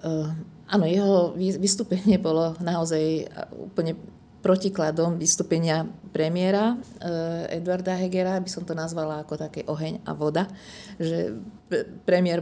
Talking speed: 110 wpm